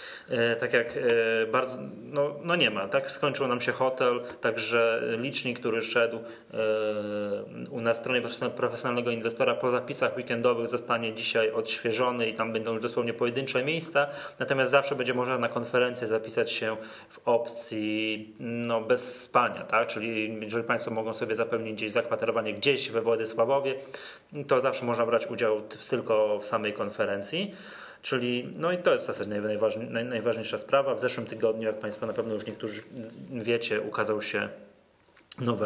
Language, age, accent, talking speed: Polish, 20-39, native, 150 wpm